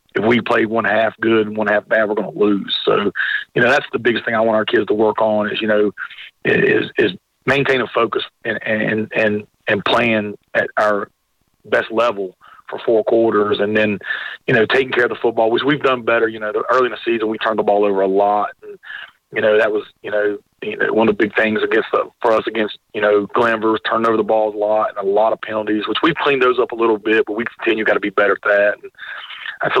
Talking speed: 255 wpm